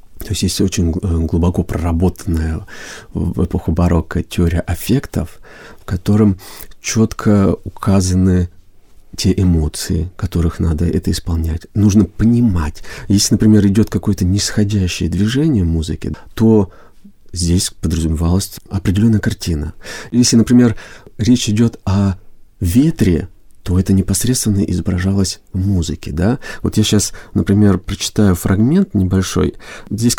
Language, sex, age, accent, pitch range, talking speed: Russian, male, 40-59, native, 85-105 Hz, 110 wpm